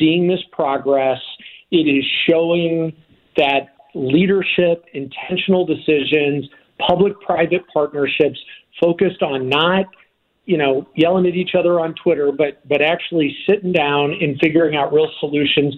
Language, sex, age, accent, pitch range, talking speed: English, male, 50-69, American, 135-170 Hz, 125 wpm